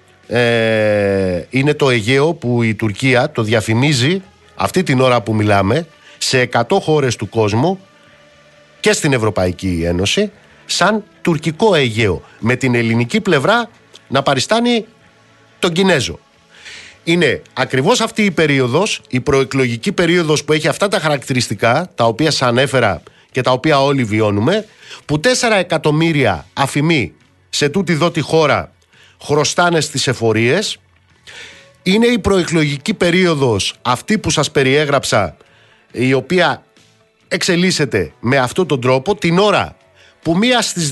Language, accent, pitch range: Greek, native, 120-175 Hz